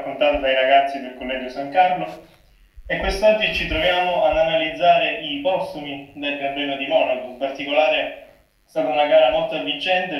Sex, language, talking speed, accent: male, Italian, 165 wpm, native